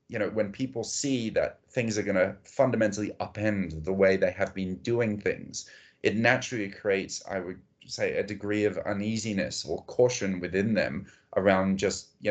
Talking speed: 170 wpm